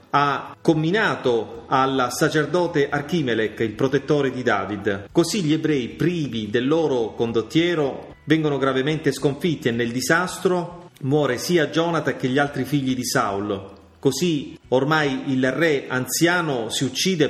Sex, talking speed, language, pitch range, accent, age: male, 130 wpm, Italian, 115-155 Hz, native, 30-49